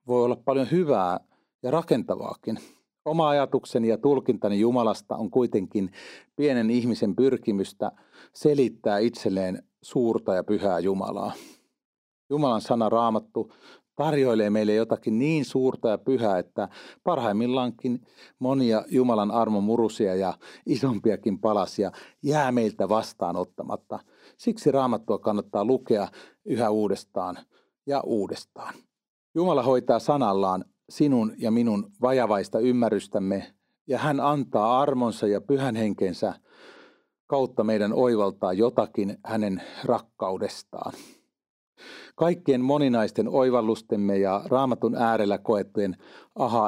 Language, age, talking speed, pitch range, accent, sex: Finnish, 40-59, 105 wpm, 105-130 Hz, native, male